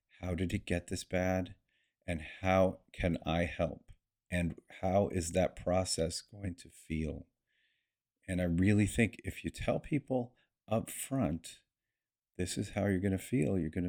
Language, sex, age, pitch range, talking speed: English, male, 40-59, 85-105 Hz, 165 wpm